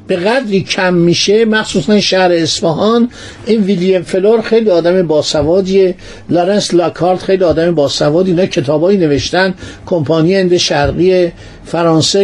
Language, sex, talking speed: Persian, male, 125 wpm